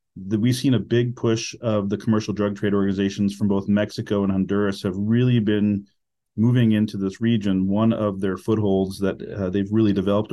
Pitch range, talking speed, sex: 100-120 Hz, 185 wpm, male